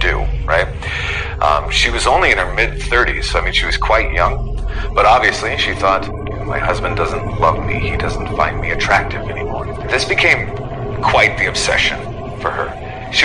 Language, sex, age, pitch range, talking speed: Filipino, male, 40-59, 95-115 Hz, 175 wpm